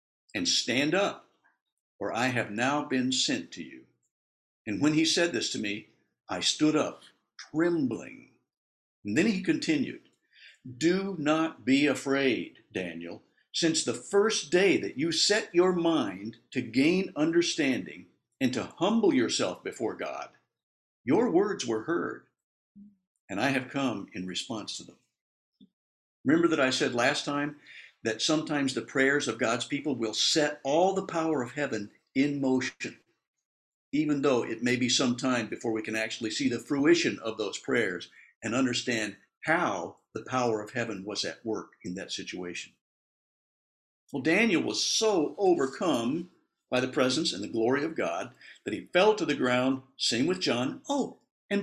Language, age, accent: English, 60-79, American